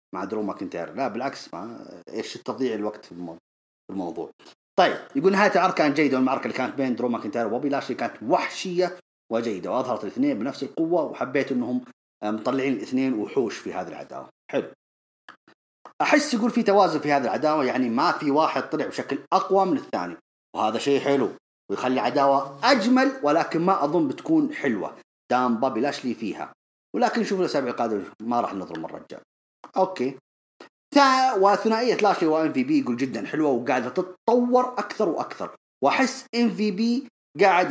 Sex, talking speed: male, 145 wpm